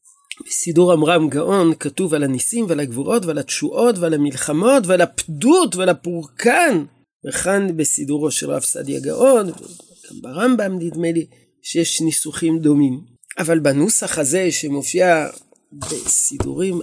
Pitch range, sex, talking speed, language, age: 150-220 Hz, male, 120 wpm, Hebrew, 40-59